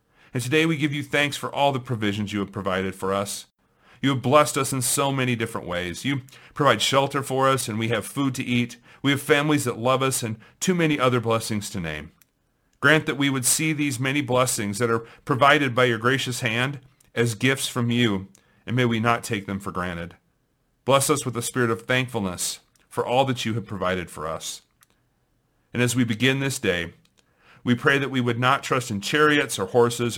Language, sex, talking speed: English, male, 215 wpm